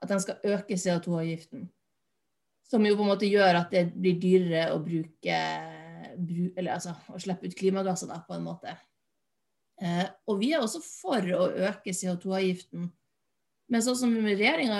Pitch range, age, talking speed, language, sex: 180-210 Hz, 30-49, 145 wpm, English, female